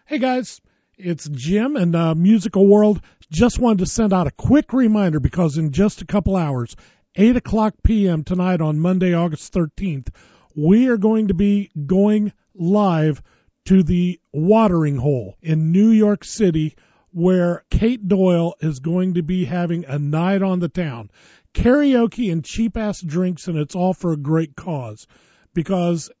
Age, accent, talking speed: 40-59, American, 160 wpm